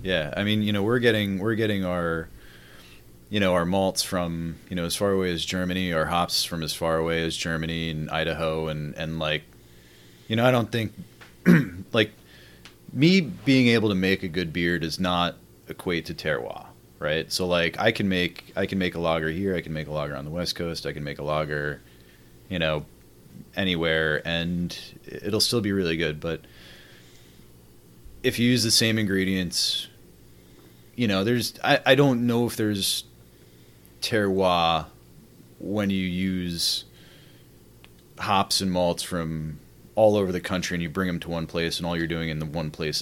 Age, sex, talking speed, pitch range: 30-49, male, 185 wpm, 75-100 Hz